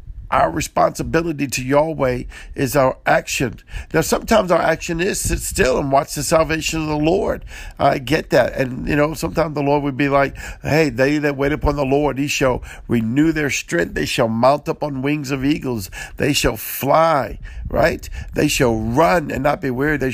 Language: English